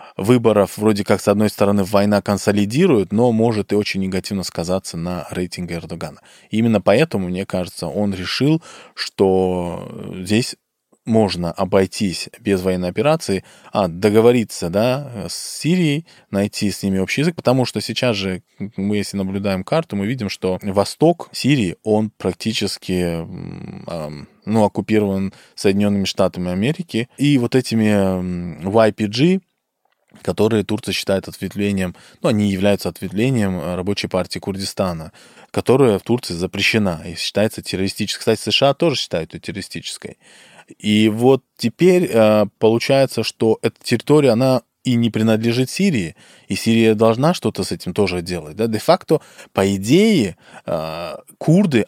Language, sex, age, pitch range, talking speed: Russian, male, 20-39, 95-125 Hz, 130 wpm